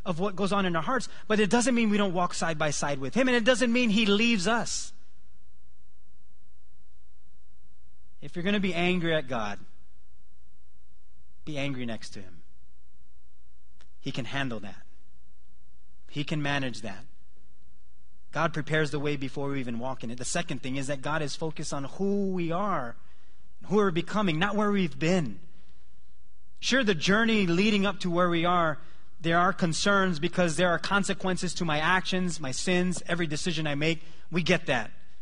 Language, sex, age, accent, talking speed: English, male, 30-49, American, 175 wpm